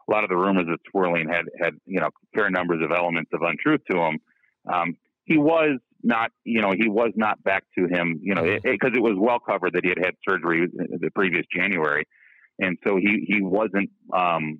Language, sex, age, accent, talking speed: English, male, 40-59, American, 220 wpm